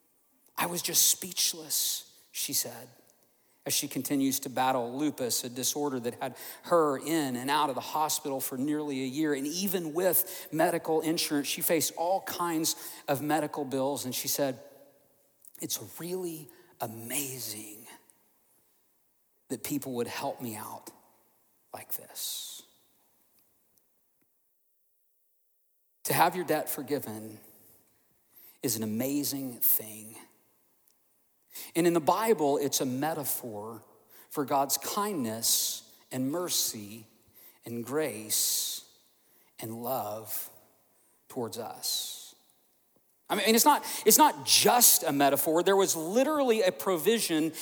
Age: 50-69